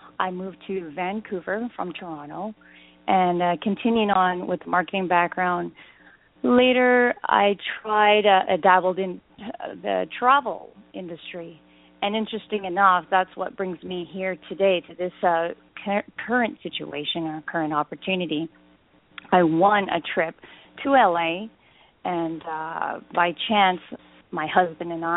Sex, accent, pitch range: female, American, 175-210 Hz